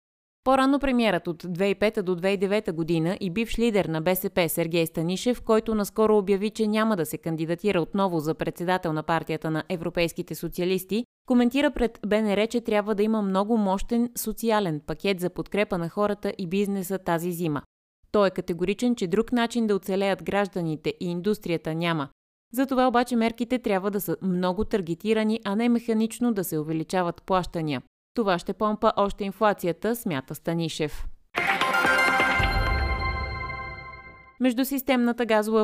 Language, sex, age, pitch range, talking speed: Bulgarian, female, 20-39, 170-220 Hz, 145 wpm